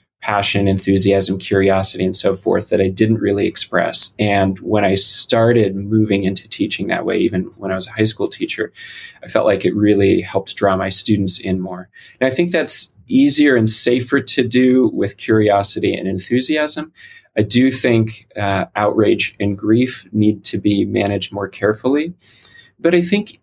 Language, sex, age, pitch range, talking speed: English, male, 20-39, 95-120 Hz, 175 wpm